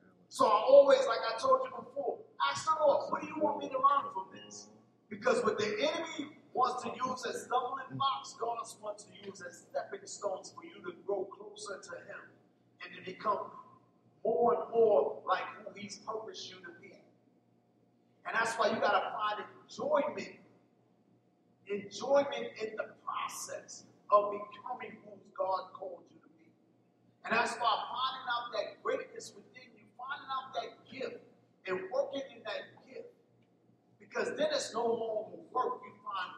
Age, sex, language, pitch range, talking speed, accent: 40-59, male, English, 200-280 Hz, 165 wpm, American